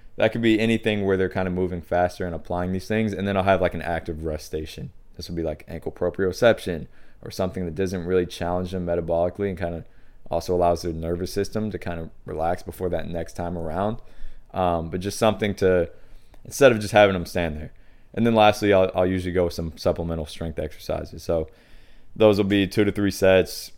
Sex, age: male, 20-39